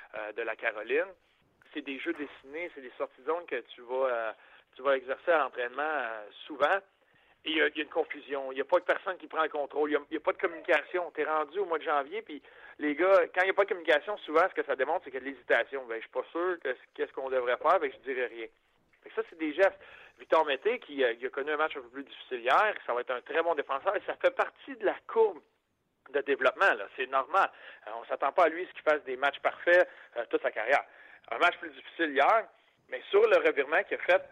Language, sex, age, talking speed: French, male, 40-59, 260 wpm